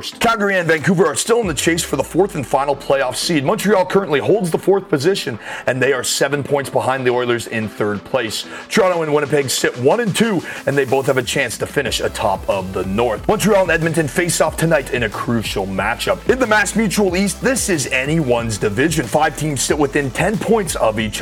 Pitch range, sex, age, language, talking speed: 130-180 Hz, male, 30-49, English, 220 wpm